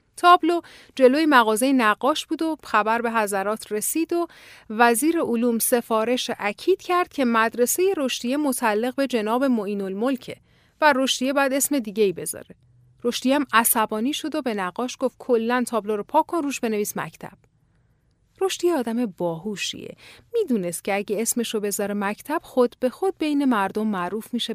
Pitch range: 215-305 Hz